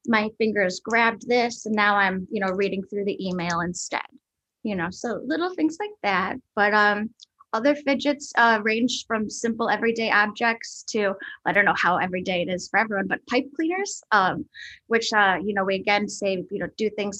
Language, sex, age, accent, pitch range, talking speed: English, female, 10-29, American, 195-255 Hz, 195 wpm